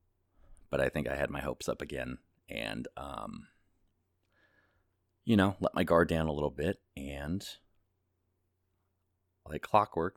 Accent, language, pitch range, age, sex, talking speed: American, English, 80-95 Hz, 30-49, male, 135 wpm